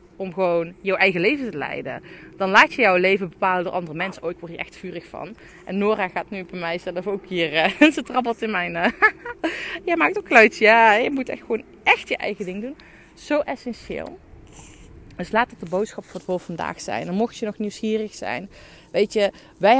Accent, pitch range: Dutch, 175-230 Hz